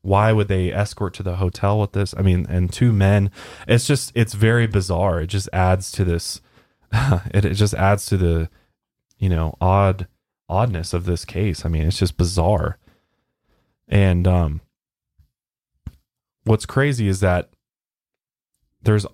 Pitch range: 90-105 Hz